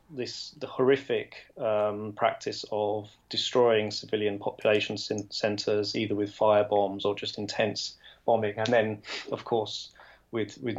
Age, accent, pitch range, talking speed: 20-39, British, 105-130 Hz, 130 wpm